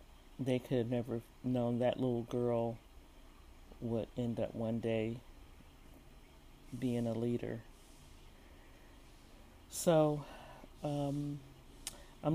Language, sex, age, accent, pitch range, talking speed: English, male, 40-59, American, 115-130 Hz, 90 wpm